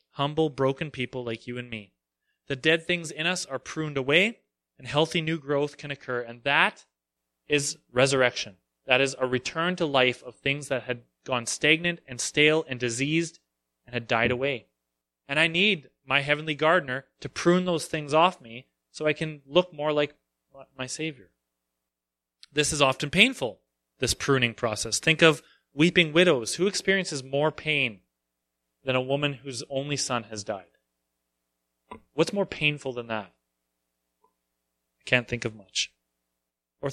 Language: English